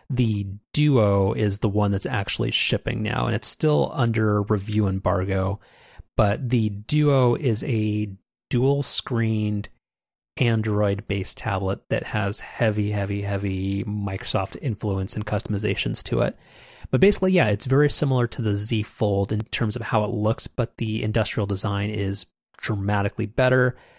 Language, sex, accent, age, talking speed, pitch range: English, male, American, 30-49, 145 wpm, 100-125 Hz